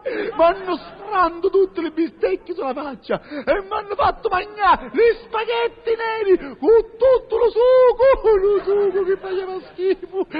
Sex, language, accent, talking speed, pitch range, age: male, Italian, native, 140 wpm, 305-395 Hz, 40-59